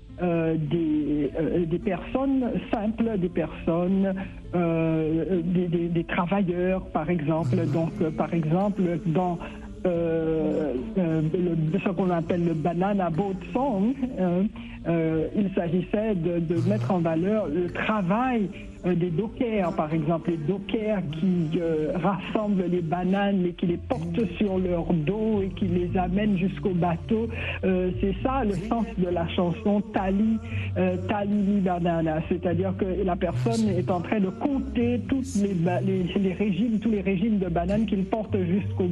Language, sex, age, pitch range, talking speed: French, male, 60-79, 170-205 Hz, 160 wpm